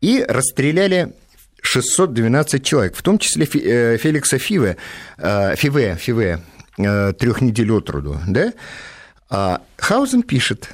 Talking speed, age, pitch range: 105 wpm, 50-69, 100-140 Hz